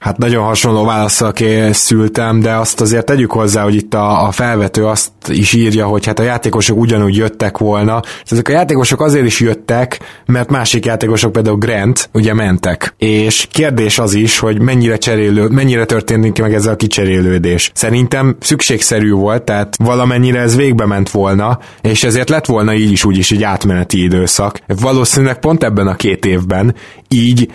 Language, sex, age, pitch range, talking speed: Hungarian, male, 20-39, 105-125 Hz, 165 wpm